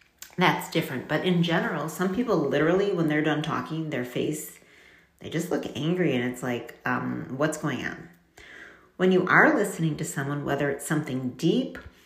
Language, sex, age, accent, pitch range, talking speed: English, female, 40-59, American, 150-185 Hz, 175 wpm